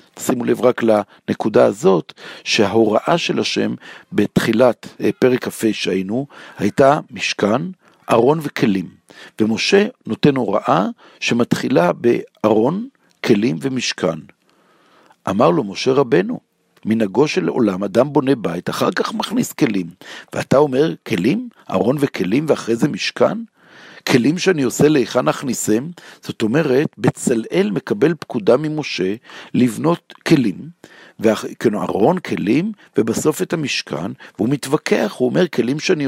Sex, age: male, 60-79